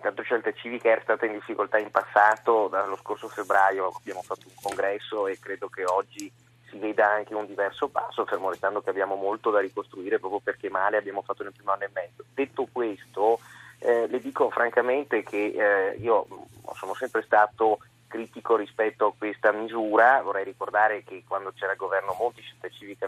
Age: 30-49